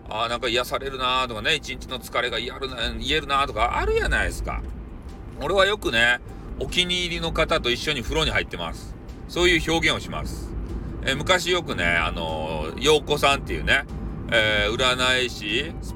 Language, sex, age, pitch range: Japanese, male, 40-59, 110-165 Hz